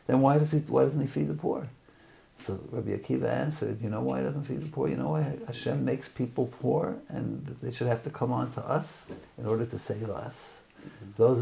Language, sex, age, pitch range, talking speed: English, male, 50-69, 120-150 Hz, 230 wpm